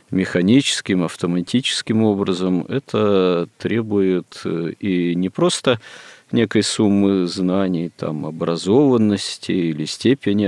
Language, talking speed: Russian, 85 wpm